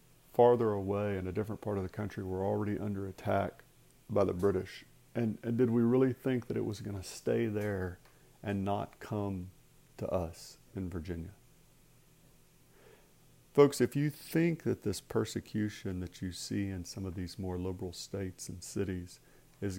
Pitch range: 95-110 Hz